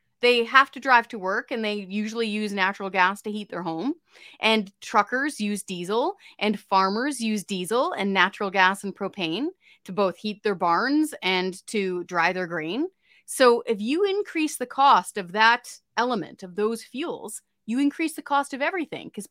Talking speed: 180 wpm